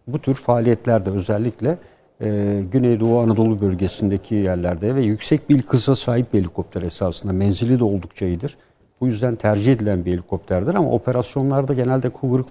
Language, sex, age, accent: Turkish, male, 60-79, native